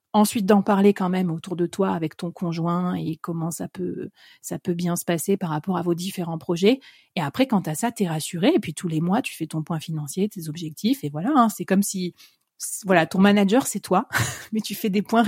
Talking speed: 245 wpm